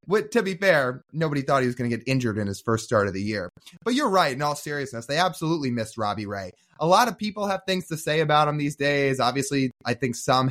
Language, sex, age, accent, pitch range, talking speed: English, male, 20-39, American, 120-170 Hz, 265 wpm